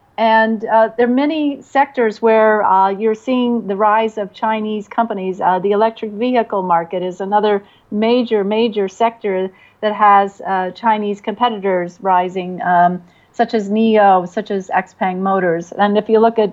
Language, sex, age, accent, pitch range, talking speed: English, female, 40-59, American, 195-235 Hz, 160 wpm